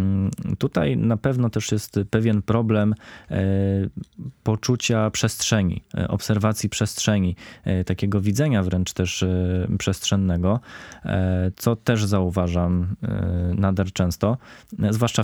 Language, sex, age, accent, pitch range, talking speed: Polish, male, 20-39, native, 100-120 Hz, 85 wpm